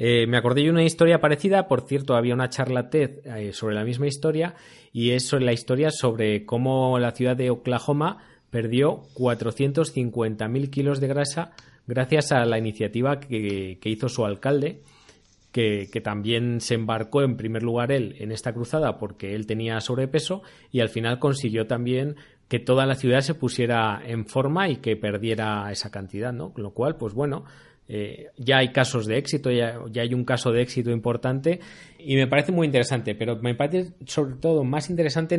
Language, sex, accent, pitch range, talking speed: Spanish, male, Spanish, 115-140 Hz, 180 wpm